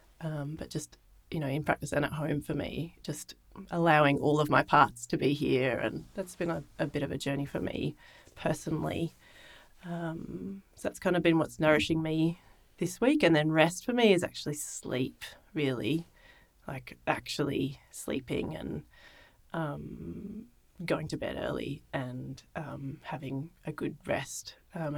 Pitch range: 145-170 Hz